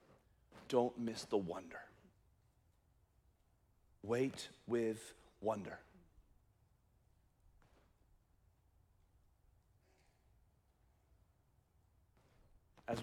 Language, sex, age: English, male, 40-59